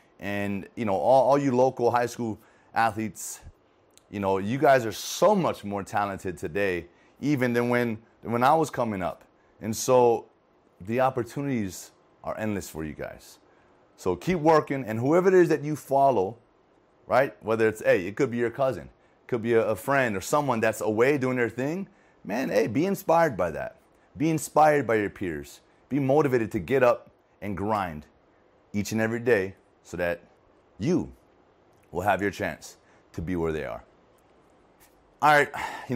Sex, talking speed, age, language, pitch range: male, 180 wpm, 30-49, English, 100-130 Hz